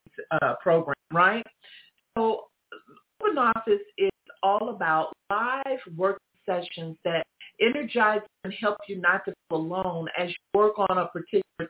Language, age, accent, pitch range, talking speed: English, 50-69, American, 170-235 Hz, 140 wpm